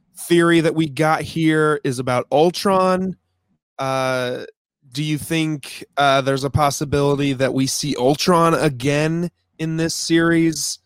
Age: 20-39